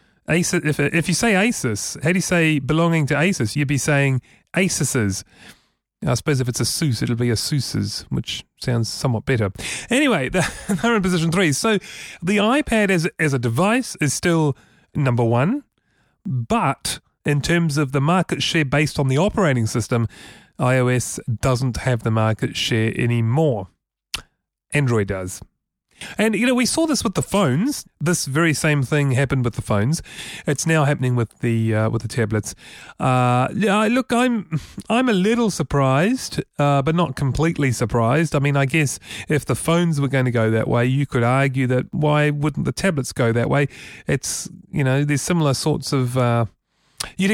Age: 30-49